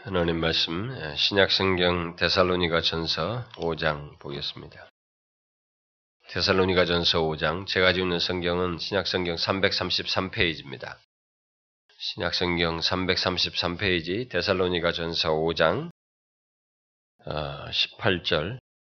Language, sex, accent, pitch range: Korean, male, native, 75-90 Hz